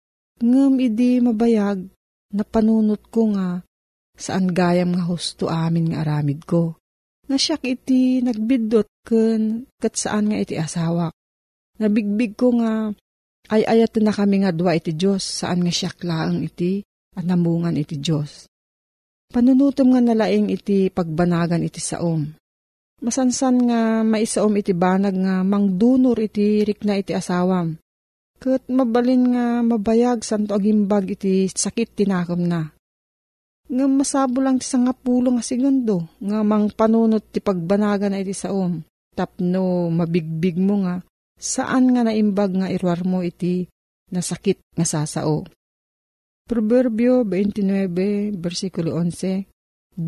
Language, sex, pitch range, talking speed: Filipino, female, 180-230 Hz, 130 wpm